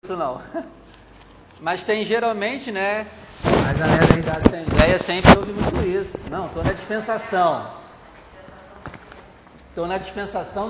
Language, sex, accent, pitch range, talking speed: Portuguese, male, Brazilian, 150-180 Hz, 110 wpm